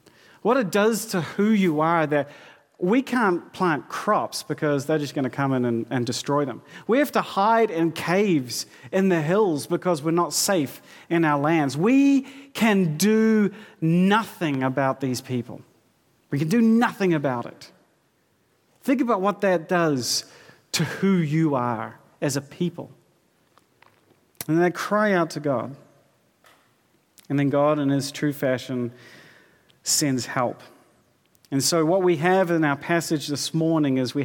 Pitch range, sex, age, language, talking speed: 135-185 Hz, male, 40-59, English, 160 wpm